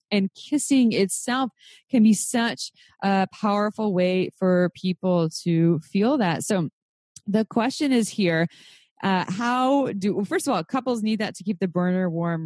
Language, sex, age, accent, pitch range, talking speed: English, female, 20-39, American, 180-230 Hz, 165 wpm